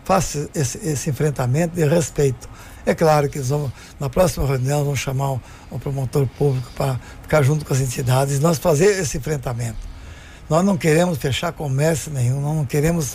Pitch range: 145-190 Hz